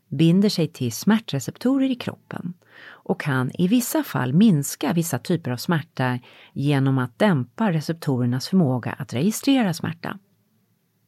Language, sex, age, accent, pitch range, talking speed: English, female, 40-59, Swedish, 135-195 Hz, 130 wpm